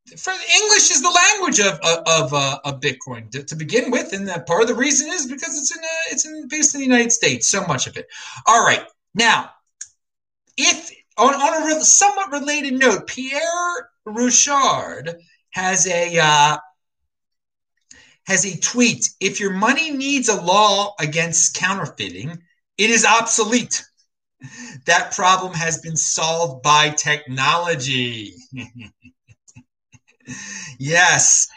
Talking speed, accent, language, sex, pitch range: 140 wpm, American, English, male, 165-245 Hz